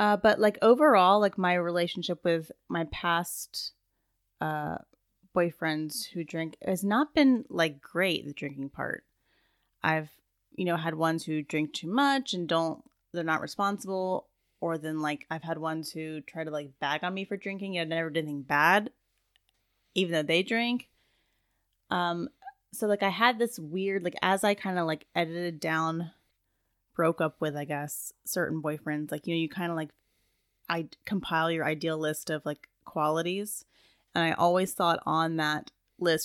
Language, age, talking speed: English, 10-29, 170 wpm